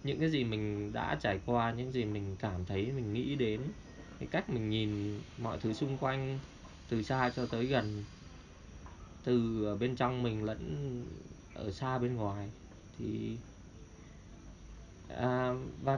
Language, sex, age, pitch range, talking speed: Vietnamese, male, 20-39, 95-140 Hz, 145 wpm